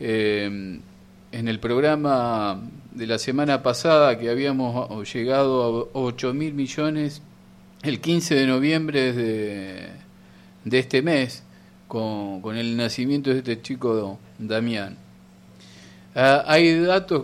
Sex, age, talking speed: male, 50-69, 120 wpm